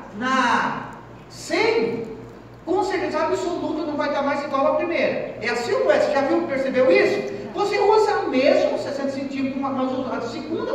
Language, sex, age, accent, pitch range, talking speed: Portuguese, male, 40-59, Brazilian, 280-385 Hz, 175 wpm